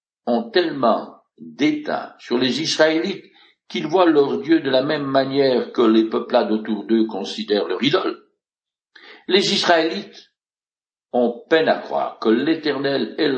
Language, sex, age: French, male, 60-79